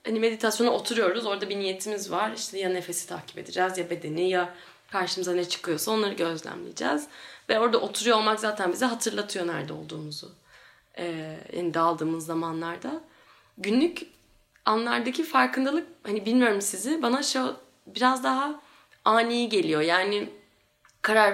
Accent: native